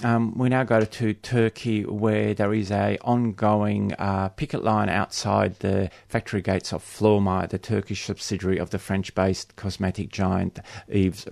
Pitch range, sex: 95-110 Hz, male